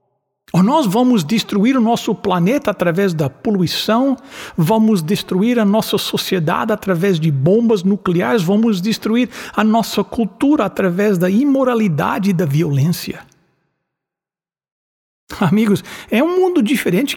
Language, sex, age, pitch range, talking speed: English, male, 60-79, 165-225 Hz, 120 wpm